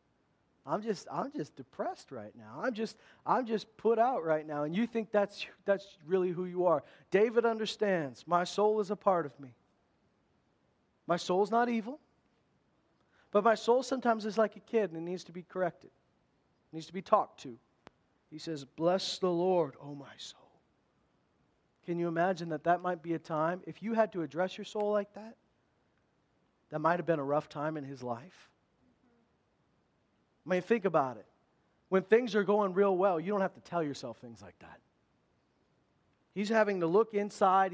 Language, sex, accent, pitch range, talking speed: English, male, American, 165-220 Hz, 190 wpm